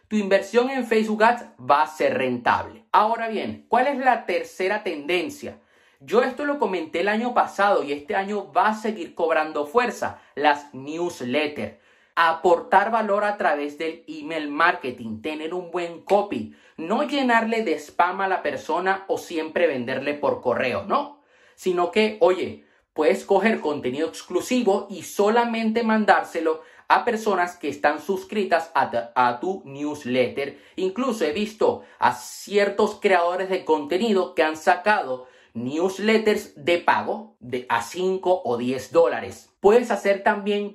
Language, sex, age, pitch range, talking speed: Spanish, male, 30-49, 160-220 Hz, 145 wpm